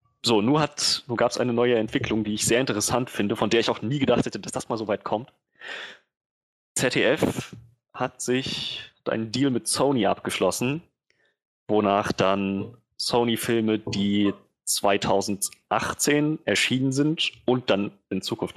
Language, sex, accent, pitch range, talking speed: German, male, German, 100-125 Hz, 145 wpm